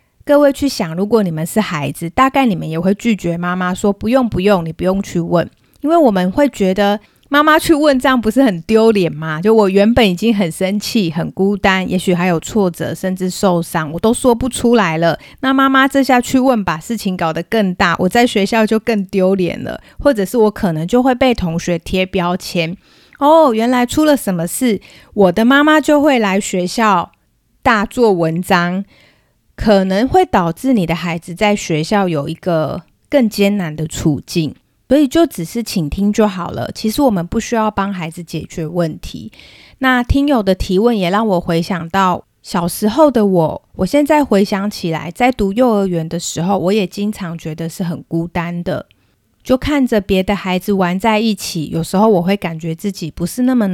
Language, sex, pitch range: Chinese, female, 175-230 Hz